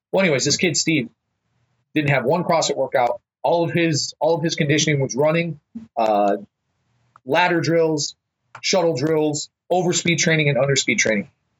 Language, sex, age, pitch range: English, male, 30-49, 120-155 Hz